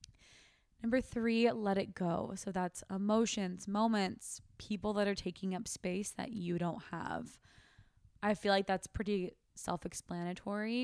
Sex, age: female, 20-39